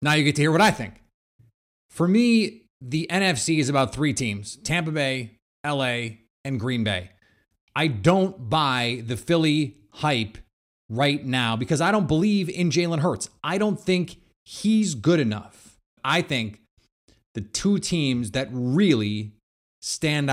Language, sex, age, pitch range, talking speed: English, male, 30-49, 125-170 Hz, 150 wpm